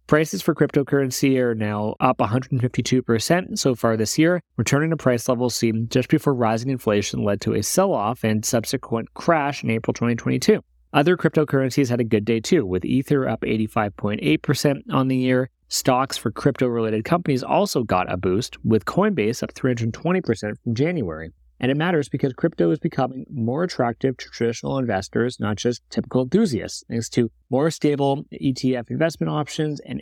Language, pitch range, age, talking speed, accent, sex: English, 115-145 Hz, 30-49, 165 wpm, American, male